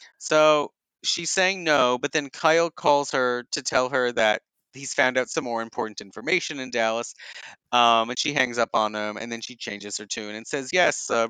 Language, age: English, 30-49